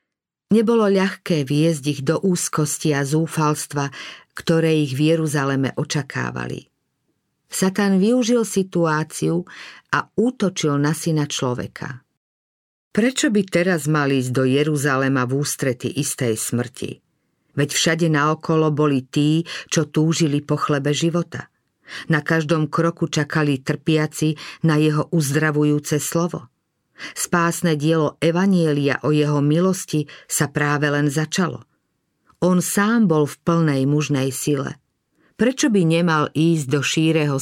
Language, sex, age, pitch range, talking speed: Slovak, female, 50-69, 145-170 Hz, 120 wpm